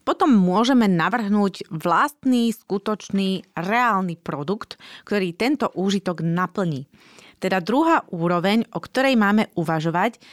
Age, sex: 30-49, female